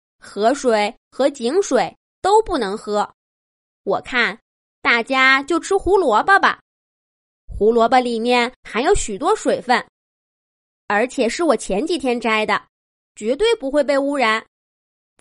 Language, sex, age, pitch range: Chinese, female, 20-39, 220-325 Hz